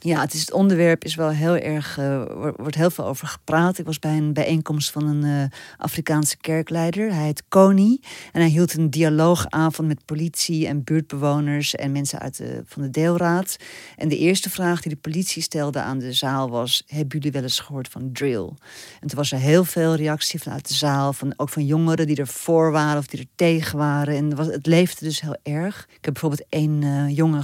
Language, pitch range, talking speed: Dutch, 140-165 Hz, 210 wpm